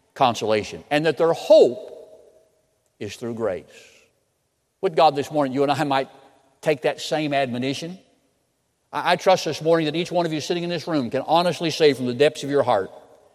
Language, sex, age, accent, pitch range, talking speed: English, male, 50-69, American, 140-200 Hz, 190 wpm